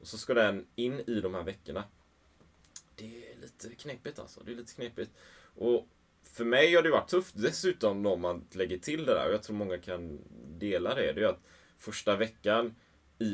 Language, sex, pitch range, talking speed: Swedish, male, 85-115 Hz, 205 wpm